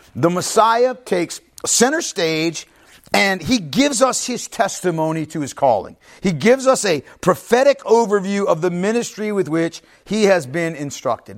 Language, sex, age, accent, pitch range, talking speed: English, male, 50-69, American, 145-210 Hz, 155 wpm